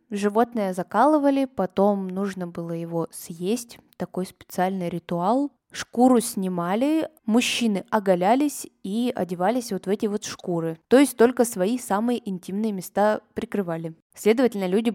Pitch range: 185-235 Hz